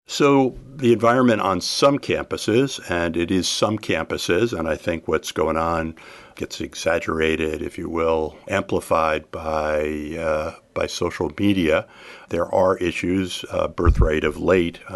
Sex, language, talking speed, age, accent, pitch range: male, English, 140 wpm, 50-69, American, 80-95 Hz